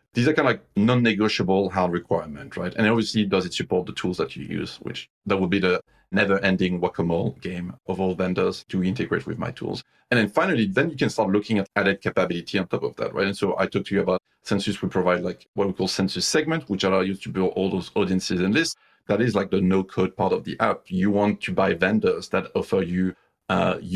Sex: male